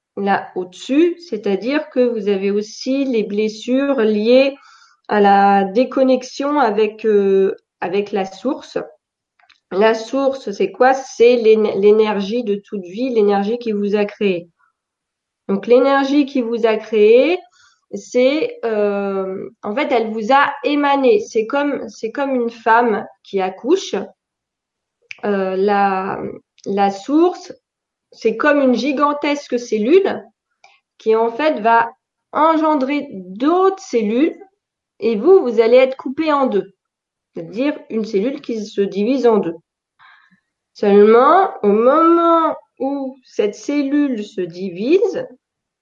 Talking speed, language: 125 wpm, French